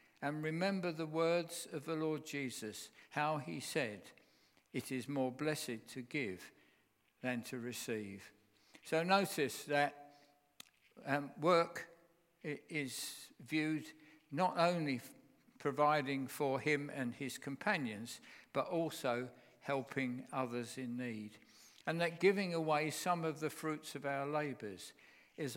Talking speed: 125 wpm